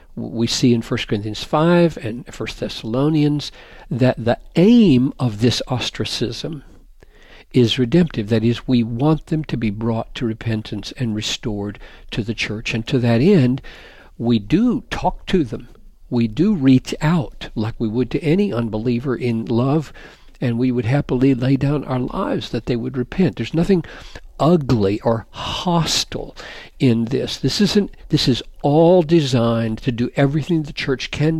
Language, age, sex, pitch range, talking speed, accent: English, 60-79, male, 115-150 Hz, 160 wpm, American